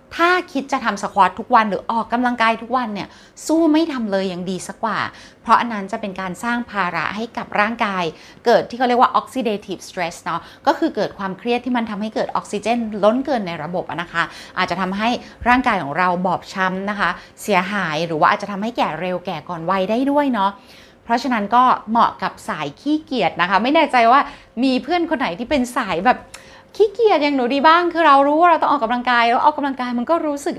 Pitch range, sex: 200-265 Hz, female